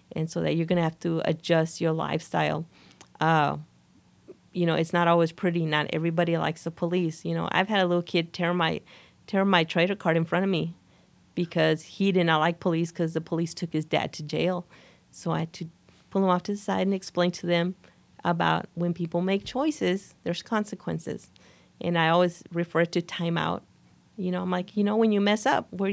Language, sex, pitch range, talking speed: English, female, 170-195 Hz, 215 wpm